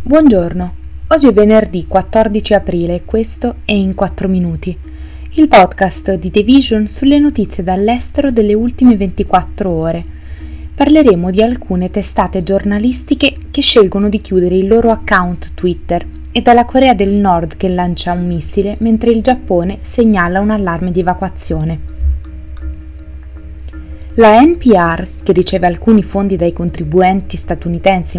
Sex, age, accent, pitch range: female, 20-39, native, 175-220 Hz